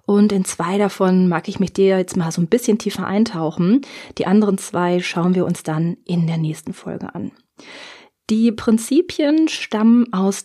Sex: female